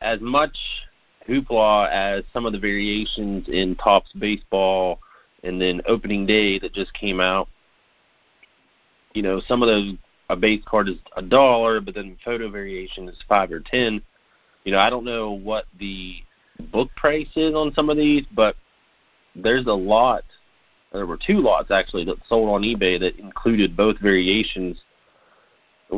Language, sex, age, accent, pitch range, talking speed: English, male, 30-49, American, 90-110 Hz, 160 wpm